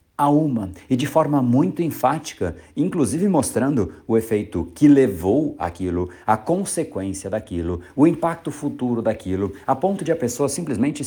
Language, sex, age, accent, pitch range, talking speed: Portuguese, male, 50-69, Brazilian, 110-155 Hz, 145 wpm